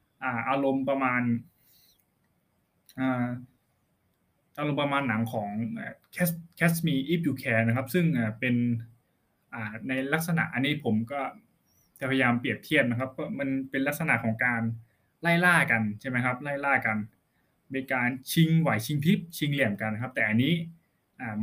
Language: Thai